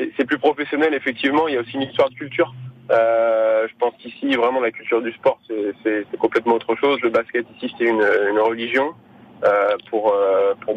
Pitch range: 115-140 Hz